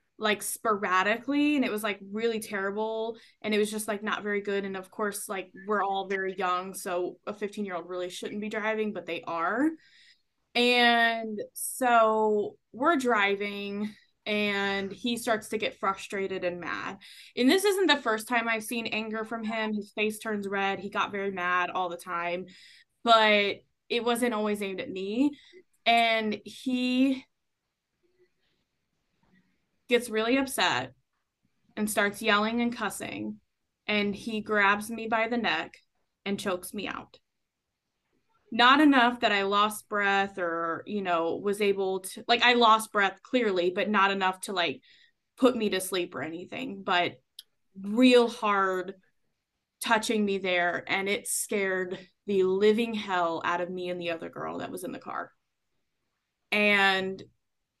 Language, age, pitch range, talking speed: English, 20-39, 195-230 Hz, 155 wpm